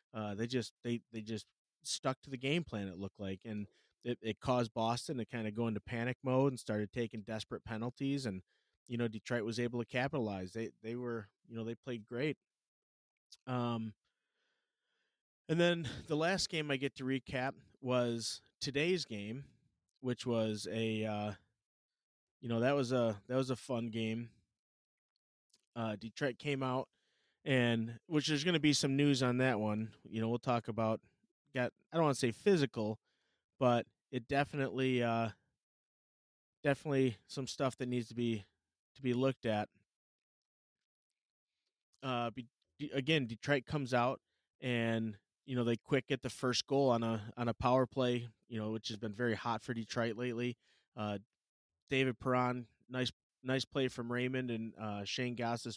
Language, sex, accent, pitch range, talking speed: English, male, American, 110-130 Hz, 170 wpm